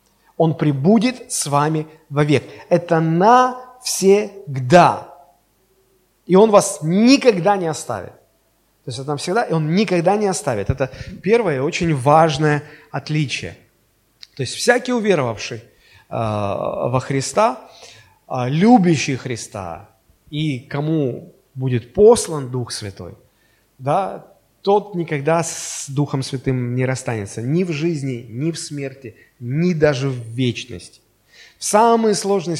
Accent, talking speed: native, 115 wpm